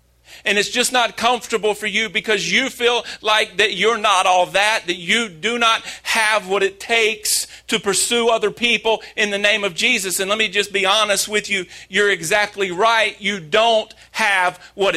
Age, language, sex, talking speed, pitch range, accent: 40-59, English, male, 195 wpm, 175-215 Hz, American